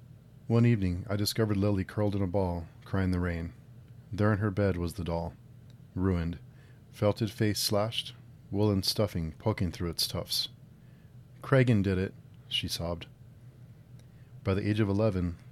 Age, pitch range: 40-59, 95-125 Hz